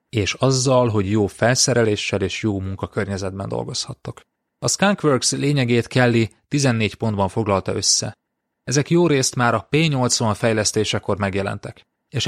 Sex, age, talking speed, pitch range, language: male, 30-49, 125 wpm, 100-125 Hz, Hungarian